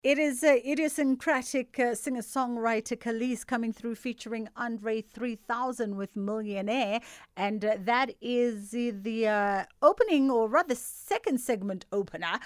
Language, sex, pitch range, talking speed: English, female, 200-255 Hz, 130 wpm